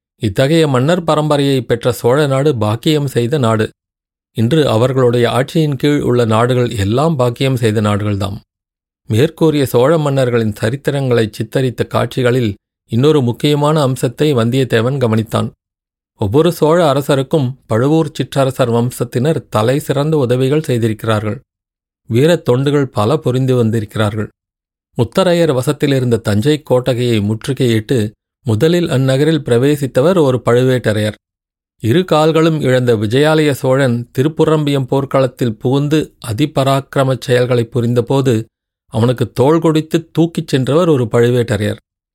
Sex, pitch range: male, 115-150 Hz